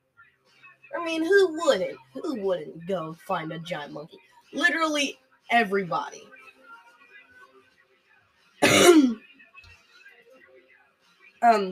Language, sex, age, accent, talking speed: English, female, 20-39, American, 70 wpm